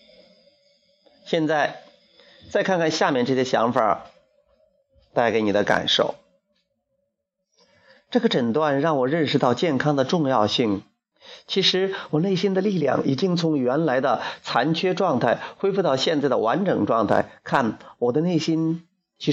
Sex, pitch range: male, 150-215 Hz